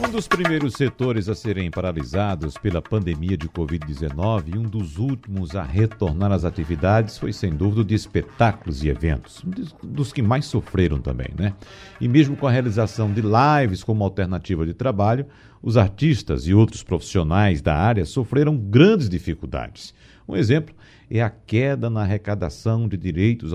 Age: 60-79